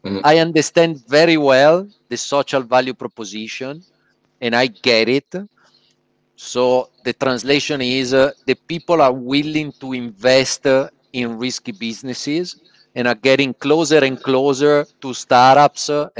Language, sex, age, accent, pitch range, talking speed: Italian, male, 40-59, native, 120-140 Hz, 135 wpm